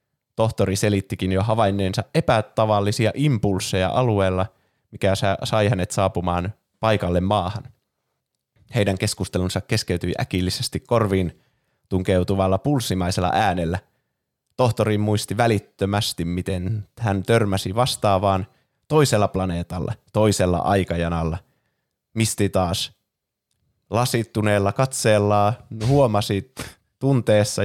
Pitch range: 95-115 Hz